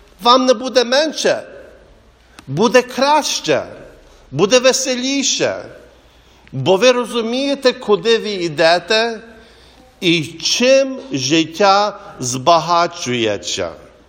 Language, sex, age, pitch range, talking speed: English, male, 50-69, 150-235 Hz, 75 wpm